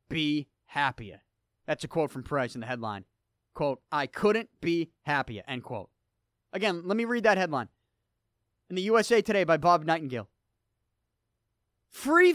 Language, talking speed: English, 150 wpm